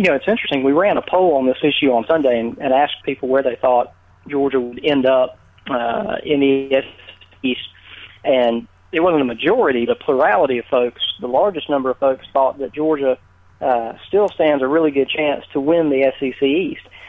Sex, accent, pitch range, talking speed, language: male, American, 130-150 Hz, 205 wpm, English